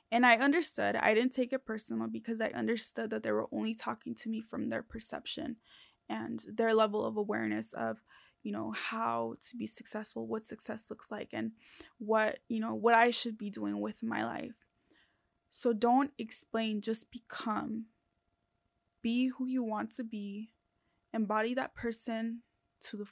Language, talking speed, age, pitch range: English, 170 wpm, 20-39, 205-235 Hz